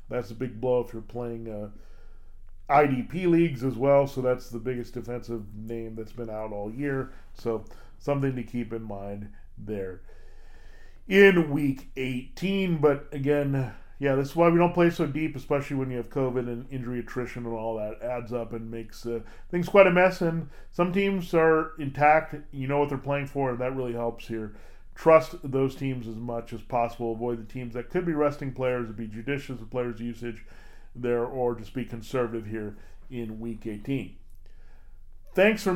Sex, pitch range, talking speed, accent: male, 115-150 Hz, 185 wpm, American